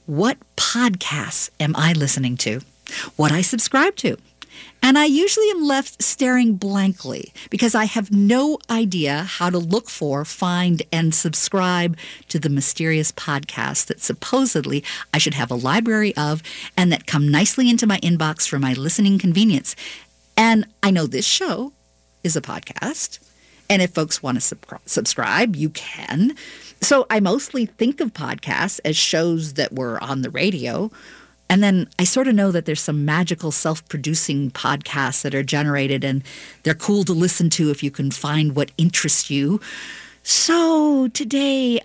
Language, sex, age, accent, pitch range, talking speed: English, female, 50-69, American, 150-215 Hz, 160 wpm